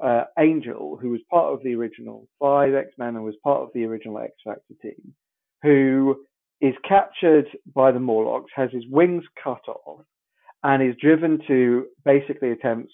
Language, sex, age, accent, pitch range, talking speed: English, male, 40-59, British, 120-155 Hz, 160 wpm